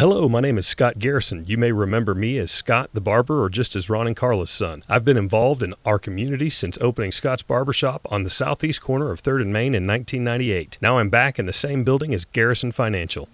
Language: English